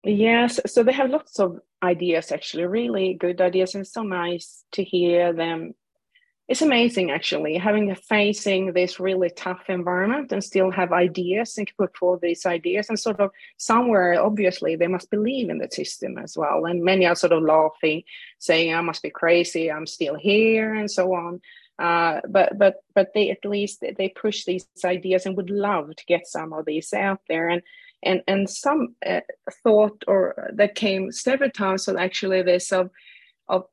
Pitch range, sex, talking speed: 175-215 Hz, female, 185 wpm